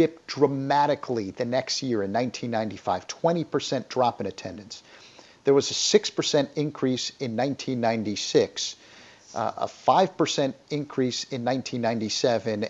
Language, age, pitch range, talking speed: English, 50-69, 125-160 Hz, 95 wpm